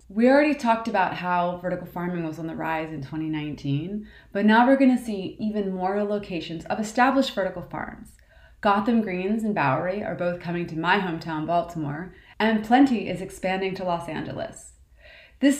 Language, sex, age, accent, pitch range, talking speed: English, female, 20-39, American, 170-225 Hz, 175 wpm